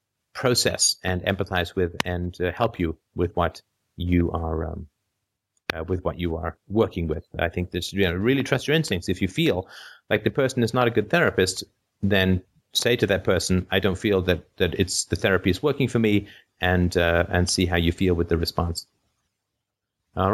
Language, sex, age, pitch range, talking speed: English, male, 30-49, 90-115 Hz, 200 wpm